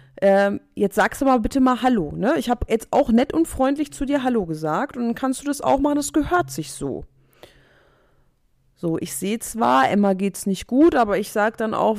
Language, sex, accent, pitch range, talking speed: German, female, German, 180-275 Hz, 220 wpm